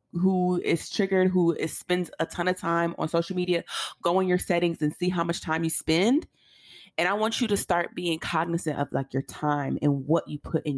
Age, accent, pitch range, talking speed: 30-49, American, 155-185 Hz, 230 wpm